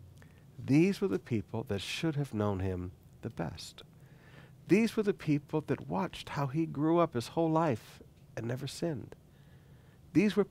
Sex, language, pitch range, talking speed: male, English, 125-160 Hz, 165 wpm